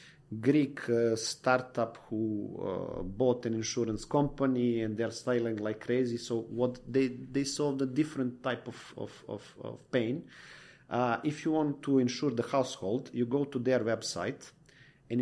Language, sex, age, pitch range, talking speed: English, male, 40-59, 125-160 Hz, 160 wpm